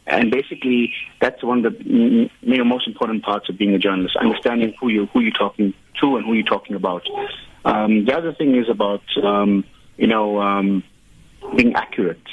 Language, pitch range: English, 100-115 Hz